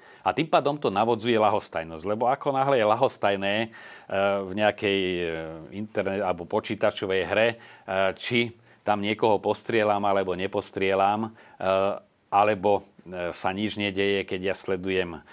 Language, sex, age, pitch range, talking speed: Slovak, male, 40-59, 90-105 Hz, 115 wpm